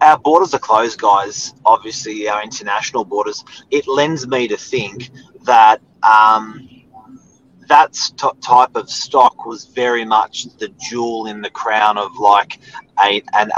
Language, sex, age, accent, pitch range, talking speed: English, male, 30-49, Australian, 105-130 Hz, 135 wpm